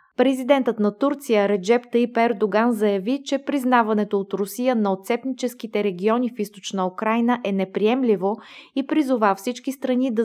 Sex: female